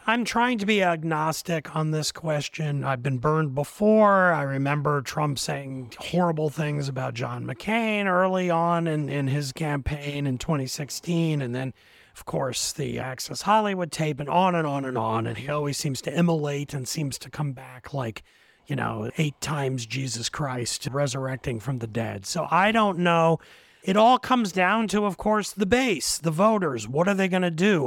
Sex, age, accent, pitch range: male, 40-59, American, 140-180 Hz